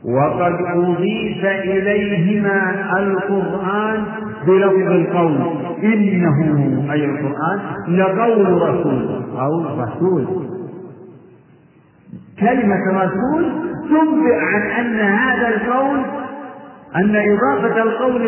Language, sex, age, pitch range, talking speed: Arabic, male, 50-69, 155-215 Hz, 75 wpm